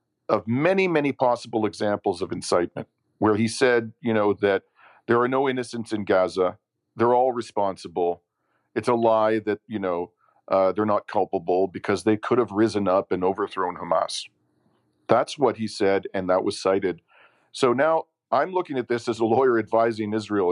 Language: English